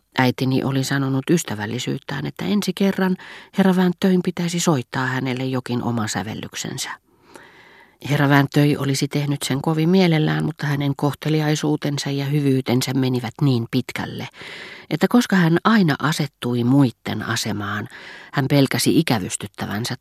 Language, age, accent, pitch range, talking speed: Finnish, 40-59, native, 120-150 Hz, 120 wpm